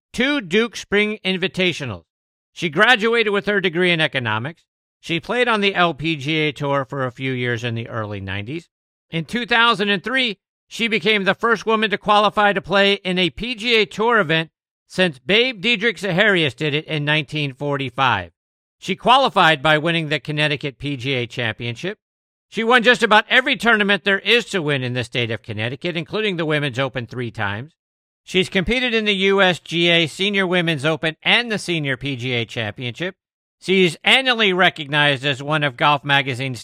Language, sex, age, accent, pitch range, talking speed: English, male, 50-69, American, 140-200 Hz, 160 wpm